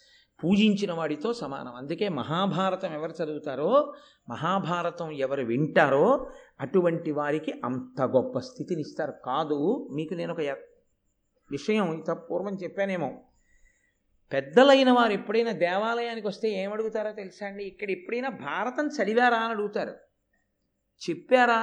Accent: native